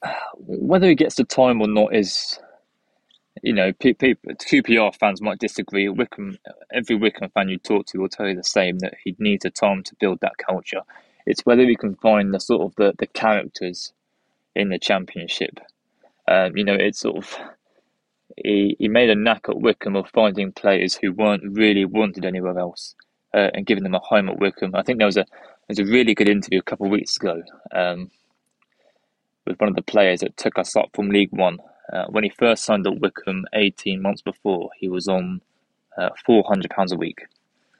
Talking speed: 205 wpm